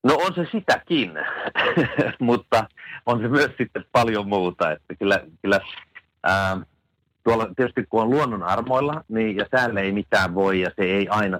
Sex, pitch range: male, 90-120 Hz